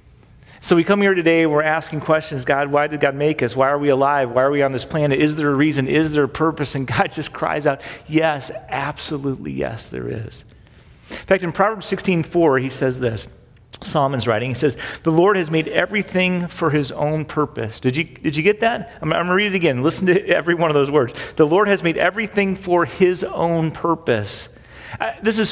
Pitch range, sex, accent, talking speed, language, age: 125-175 Hz, male, American, 225 wpm, English, 40-59